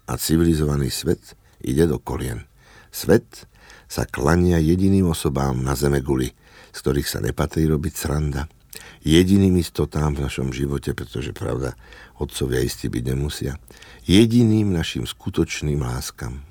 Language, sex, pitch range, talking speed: Slovak, male, 65-85 Hz, 125 wpm